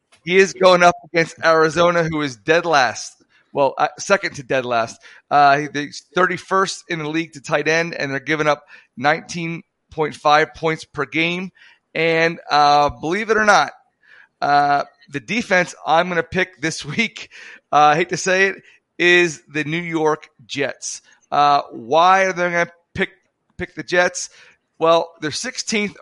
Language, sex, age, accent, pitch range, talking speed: English, male, 30-49, American, 145-180 Hz, 165 wpm